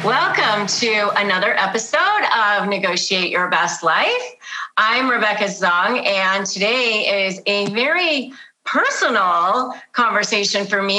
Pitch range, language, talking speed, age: 180-230 Hz, English, 115 wpm, 30-49